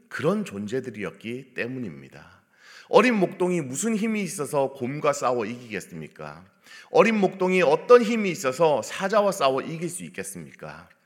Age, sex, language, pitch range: 40-59, male, Korean, 110-175 Hz